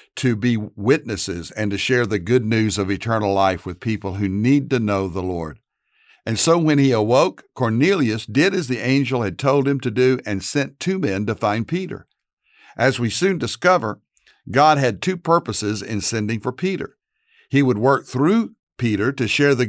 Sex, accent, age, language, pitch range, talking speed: male, American, 60-79, English, 110-145 Hz, 190 wpm